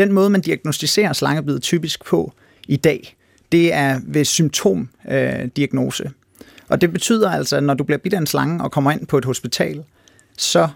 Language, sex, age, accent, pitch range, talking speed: Danish, male, 30-49, native, 135-165 Hz, 180 wpm